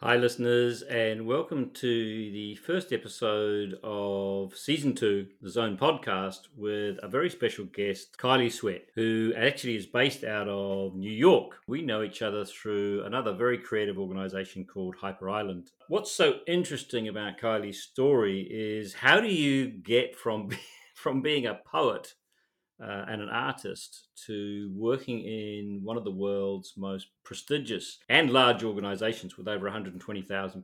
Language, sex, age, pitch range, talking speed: English, male, 40-59, 100-120 Hz, 150 wpm